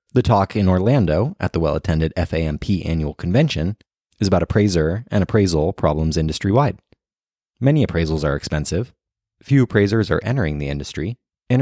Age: 30-49